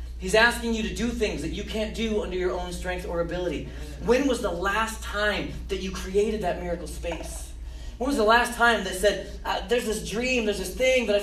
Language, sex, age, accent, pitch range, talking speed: English, male, 30-49, American, 130-215 Hz, 225 wpm